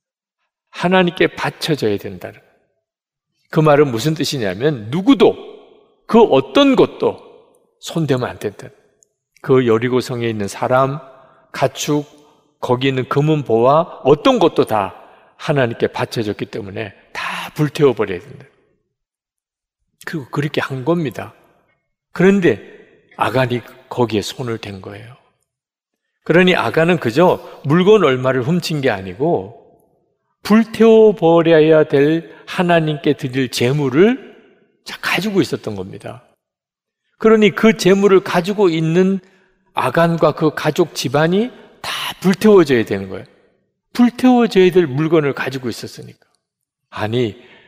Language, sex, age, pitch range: Korean, male, 40-59, 130-195 Hz